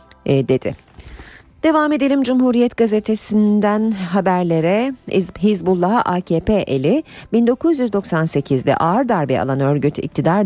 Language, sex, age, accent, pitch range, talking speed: Turkish, female, 40-59, native, 140-230 Hz, 85 wpm